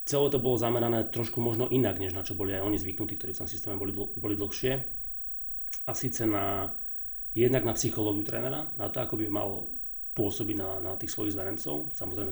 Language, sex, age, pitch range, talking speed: Slovak, male, 30-49, 95-120 Hz, 200 wpm